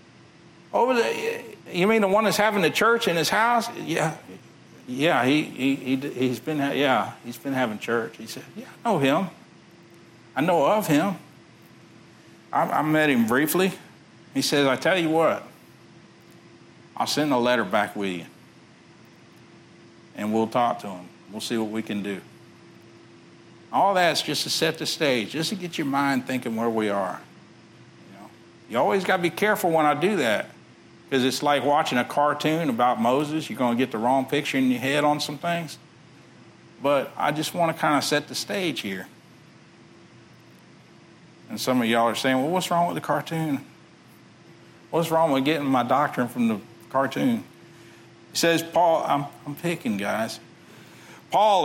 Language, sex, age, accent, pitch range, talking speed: English, male, 60-79, American, 125-165 Hz, 175 wpm